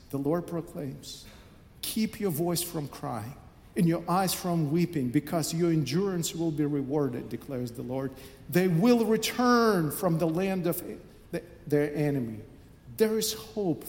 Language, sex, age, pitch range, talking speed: English, male, 50-69, 145-190 Hz, 145 wpm